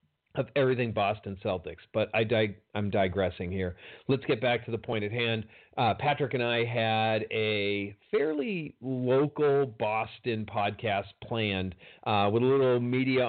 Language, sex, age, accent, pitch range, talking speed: English, male, 40-59, American, 105-140 Hz, 155 wpm